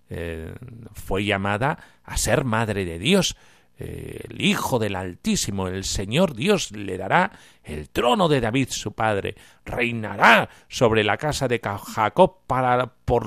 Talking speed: 130 wpm